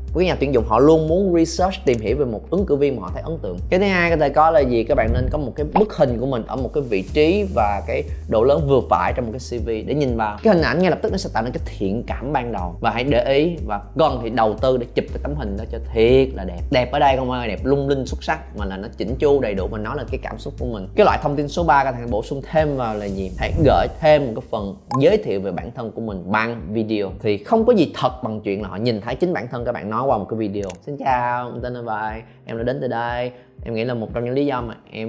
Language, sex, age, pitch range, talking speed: Vietnamese, male, 20-39, 110-140 Hz, 320 wpm